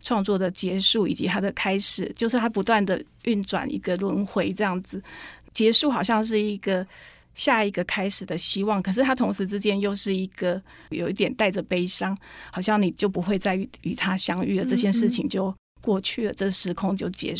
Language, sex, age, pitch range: Chinese, female, 30-49, 185-210 Hz